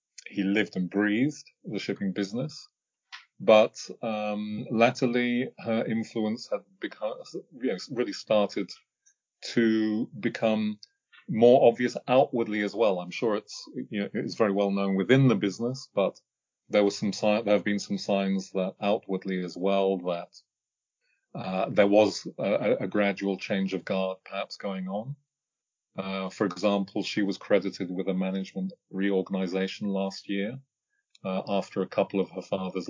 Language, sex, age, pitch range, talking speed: English, male, 30-49, 95-115 Hz, 150 wpm